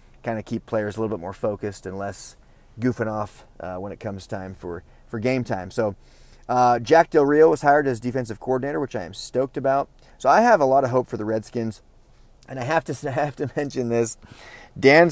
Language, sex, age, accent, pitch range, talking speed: English, male, 30-49, American, 105-135 Hz, 225 wpm